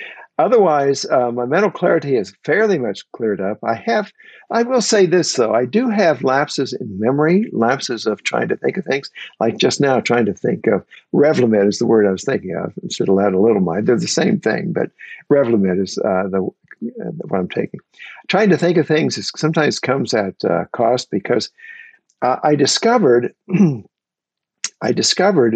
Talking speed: 200 wpm